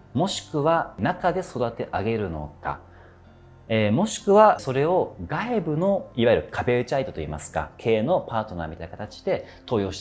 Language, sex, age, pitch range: Japanese, male, 40-59, 90-145 Hz